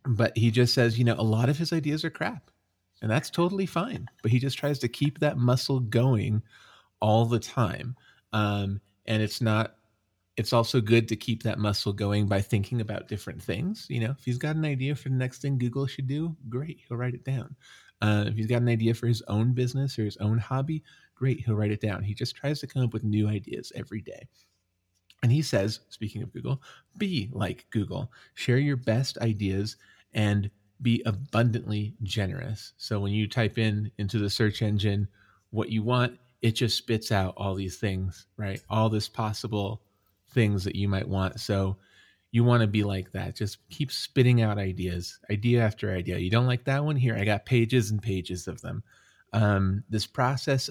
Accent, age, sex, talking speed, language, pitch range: American, 30-49, male, 200 wpm, English, 105-125 Hz